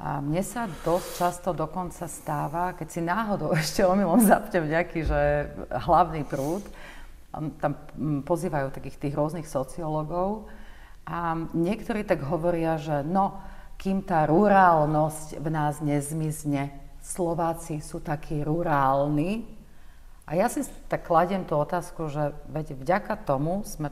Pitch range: 145-175 Hz